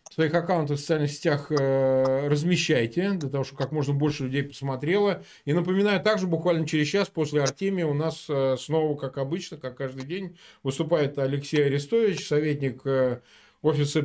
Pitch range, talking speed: 145-185 Hz, 155 wpm